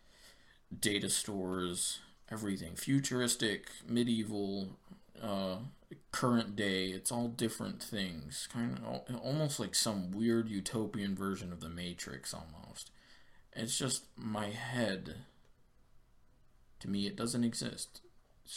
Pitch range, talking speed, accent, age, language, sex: 95-115 Hz, 110 wpm, American, 20-39, English, male